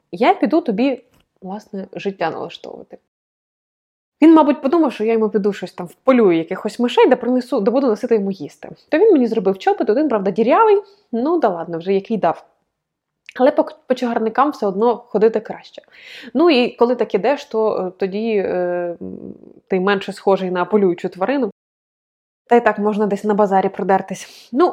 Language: Ukrainian